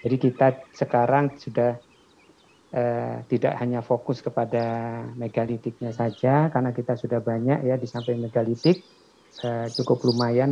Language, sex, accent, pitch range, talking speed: Indonesian, male, native, 115-135 Hz, 120 wpm